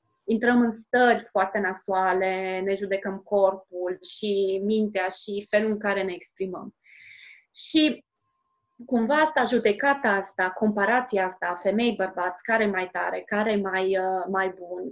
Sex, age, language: female, 30-49, Romanian